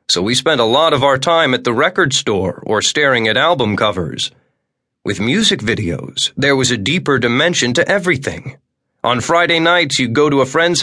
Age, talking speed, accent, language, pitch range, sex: 30-49, 195 wpm, American, English, 125-165 Hz, male